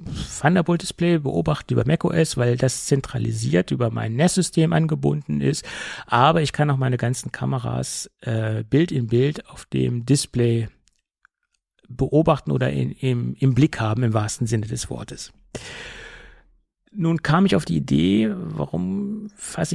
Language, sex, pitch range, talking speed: German, male, 115-155 Hz, 135 wpm